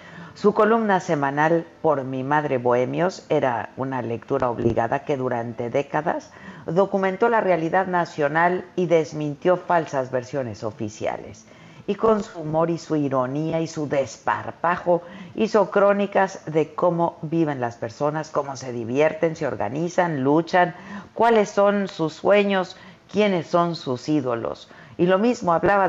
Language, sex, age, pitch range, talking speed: Spanish, female, 50-69, 130-180 Hz, 135 wpm